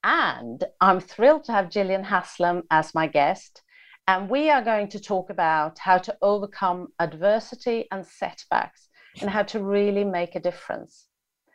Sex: female